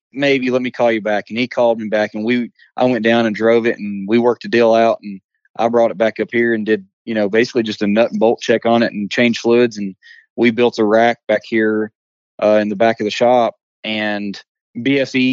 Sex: male